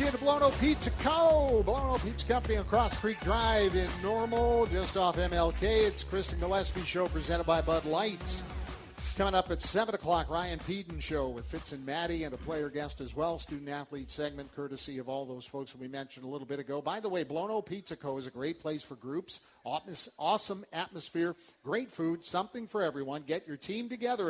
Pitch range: 140-180 Hz